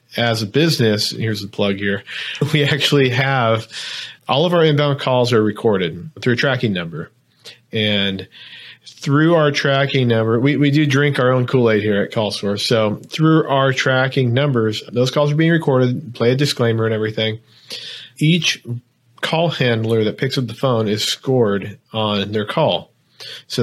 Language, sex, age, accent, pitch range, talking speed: English, male, 40-59, American, 110-140 Hz, 165 wpm